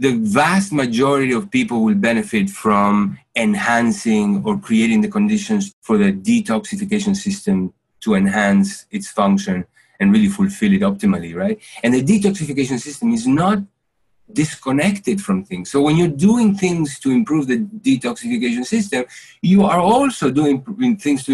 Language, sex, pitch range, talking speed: English, male, 150-215 Hz, 145 wpm